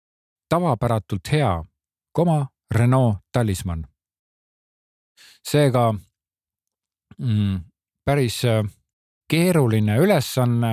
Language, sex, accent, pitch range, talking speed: Czech, male, Finnish, 105-135 Hz, 55 wpm